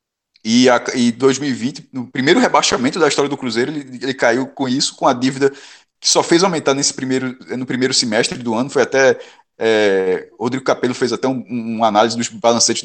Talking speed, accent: 180 wpm, Brazilian